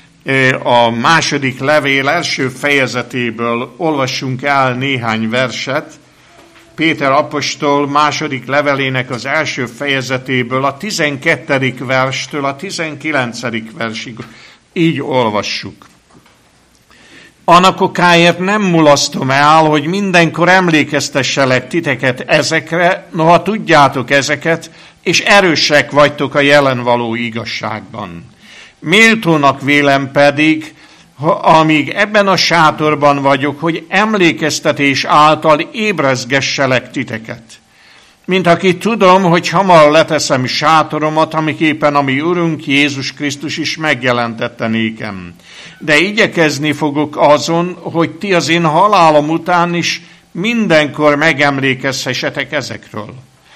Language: Hungarian